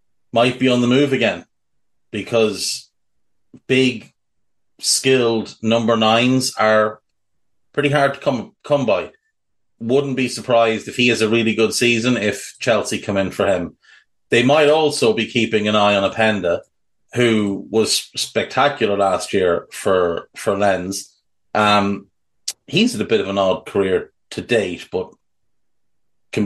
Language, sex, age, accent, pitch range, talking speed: English, male, 30-49, Irish, 100-115 Hz, 145 wpm